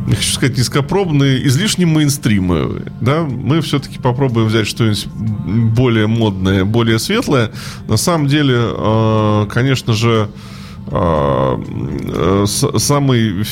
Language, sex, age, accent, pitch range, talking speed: Russian, male, 20-39, native, 95-115 Hz, 95 wpm